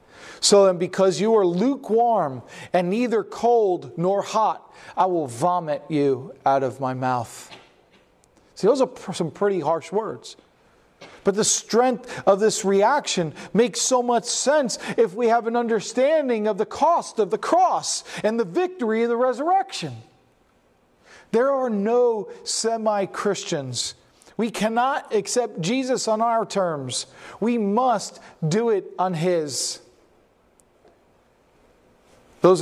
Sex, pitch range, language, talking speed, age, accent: male, 140-225 Hz, English, 130 wpm, 40-59, American